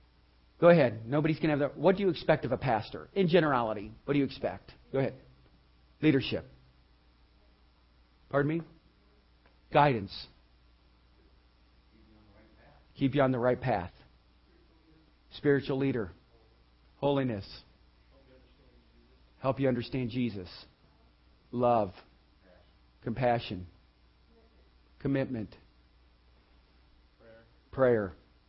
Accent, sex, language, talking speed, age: American, male, English, 90 wpm, 40-59